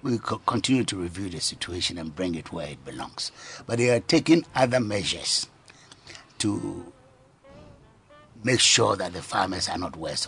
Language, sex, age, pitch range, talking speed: English, male, 60-79, 95-130 Hz, 160 wpm